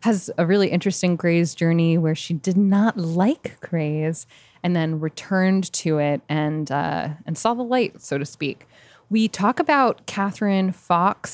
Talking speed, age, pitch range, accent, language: 165 wpm, 20-39, 155-185 Hz, American, English